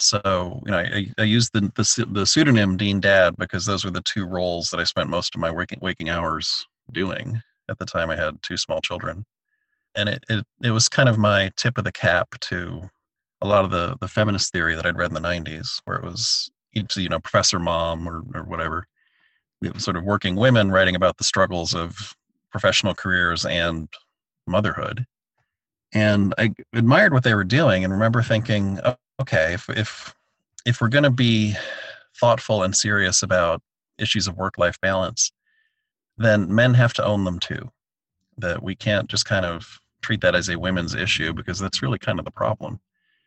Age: 40-59